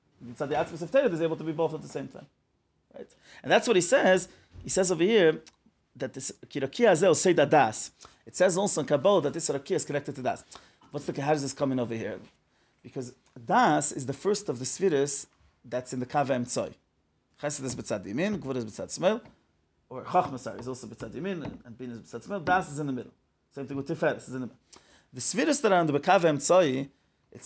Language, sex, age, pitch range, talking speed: English, male, 30-49, 140-185 Hz, 215 wpm